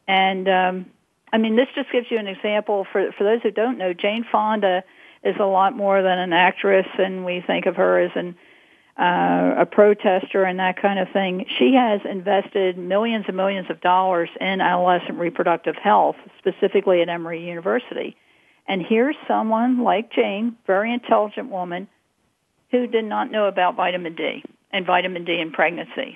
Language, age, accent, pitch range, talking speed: English, 50-69, American, 185-220 Hz, 175 wpm